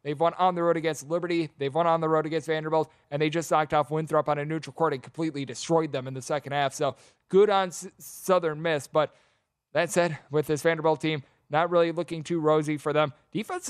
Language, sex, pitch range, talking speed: English, male, 145-170 Hz, 230 wpm